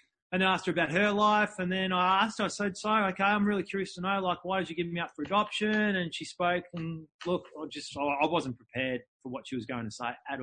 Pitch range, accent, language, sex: 135-185 Hz, Australian, English, male